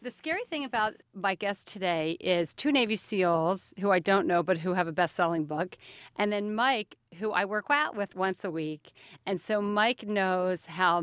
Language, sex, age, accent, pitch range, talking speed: English, female, 40-59, American, 170-205 Hz, 205 wpm